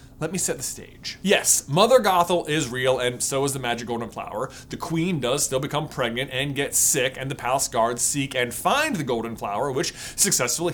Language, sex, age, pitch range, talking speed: English, male, 30-49, 140-215 Hz, 210 wpm